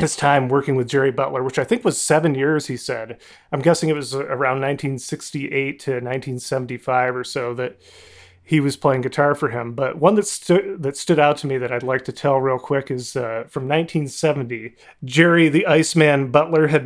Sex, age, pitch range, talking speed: male, 30-49, 130-155 Hz, 200 wpm